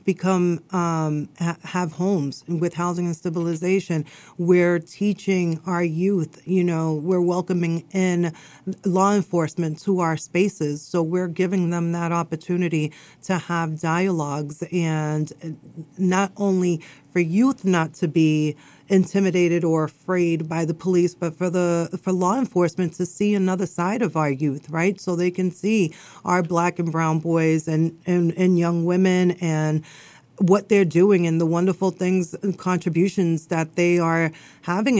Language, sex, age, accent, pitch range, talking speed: English, female, 40-59, American, 165-185 Hz, 150 wpm